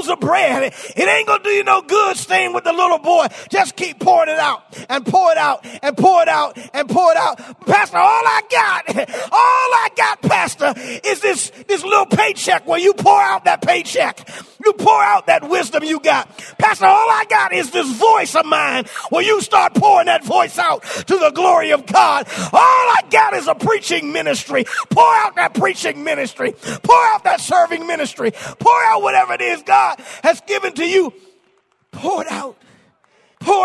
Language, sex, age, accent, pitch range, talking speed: English, male, 30-49, American, 330-420 Hz, 195 wpm